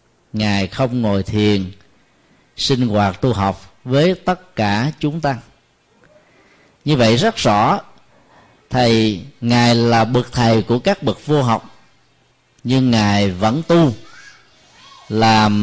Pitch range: 105-135 Hz